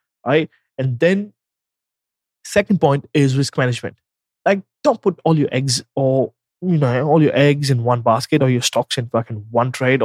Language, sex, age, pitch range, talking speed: English, male, 20-39, 130-185 Hz, 180 wpm